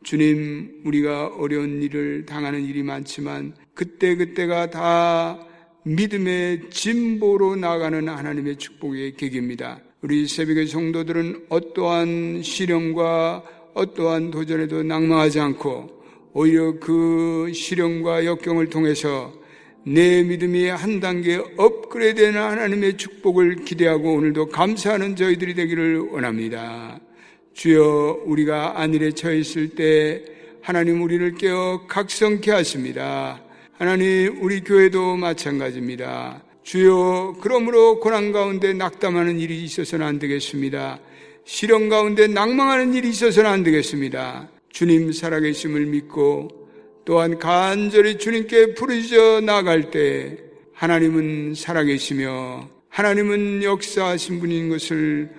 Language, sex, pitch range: Korean, male, 150-185 Hz